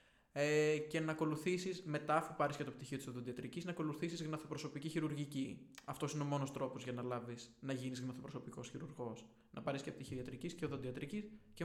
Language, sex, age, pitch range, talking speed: Greek, male, 20-39, 130-160 Hz, 180 wpm